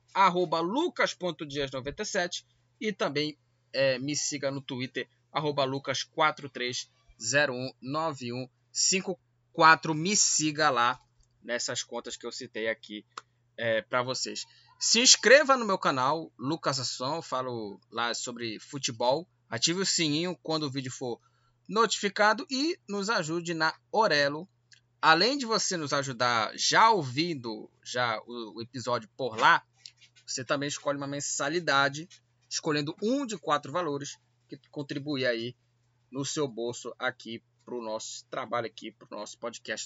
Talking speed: 130 wpm